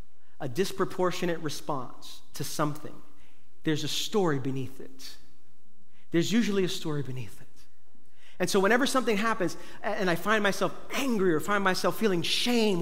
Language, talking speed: English, 145 wpm